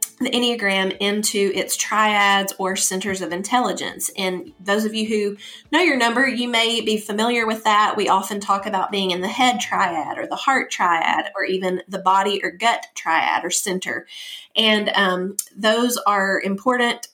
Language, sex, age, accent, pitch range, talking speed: English, female, 30-49, American, 190-245 Hz, 175 wpm